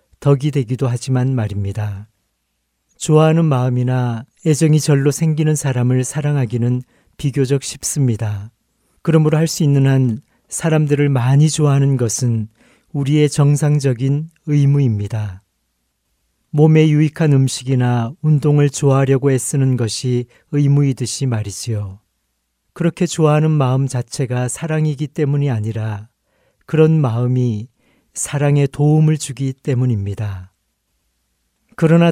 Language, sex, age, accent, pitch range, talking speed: English, male, 40-59, Korean, 115-150 Hz, 90 wpm